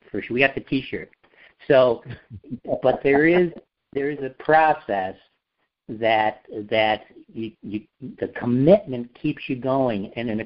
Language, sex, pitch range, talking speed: English, male, 100-125 Hz, 140 wpm